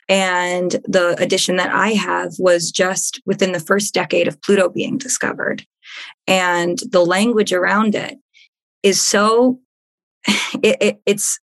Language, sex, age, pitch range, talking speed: English, female, 20-39, 180-220 Hz, 125 wpm